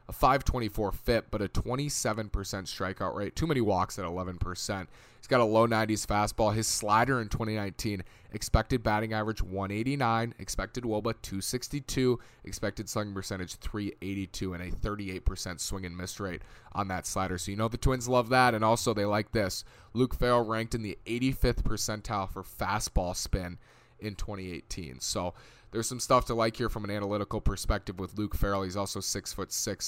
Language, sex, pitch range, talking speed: English, male, 95-115 Hz, 170 wpm